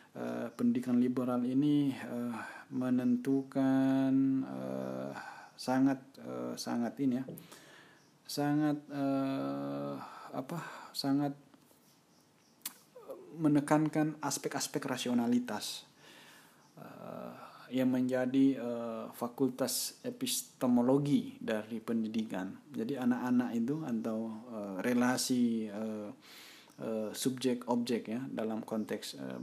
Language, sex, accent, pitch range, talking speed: Indonesian, male, native, 110-135 Hz, 80 wpm